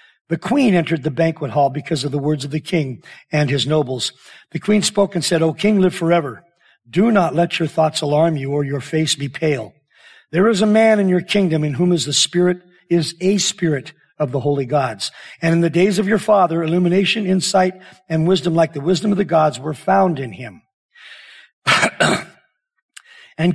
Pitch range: 150-185 Hz